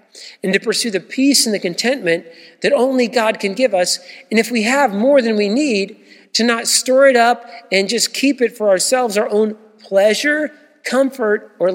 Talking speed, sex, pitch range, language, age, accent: 195 wpm, male, 185-245 Hz, English, 50-69, American